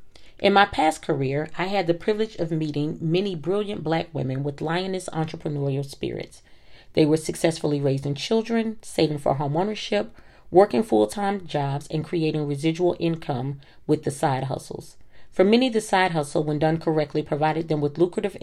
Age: 40-59